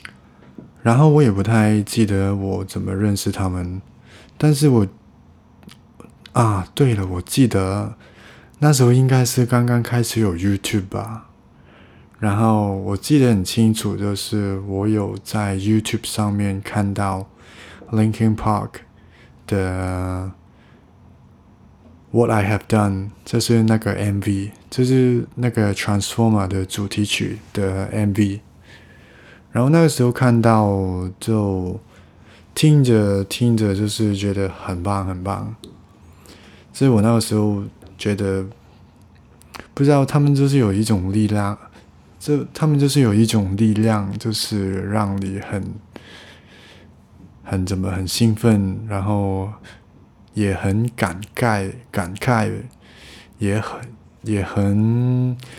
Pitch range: 100-115 Hz